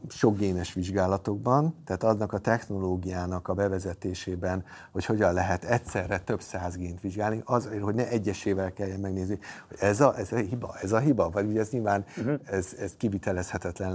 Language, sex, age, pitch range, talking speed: Hungarian, male, 50-69, 95-110 Hz, 170 wpm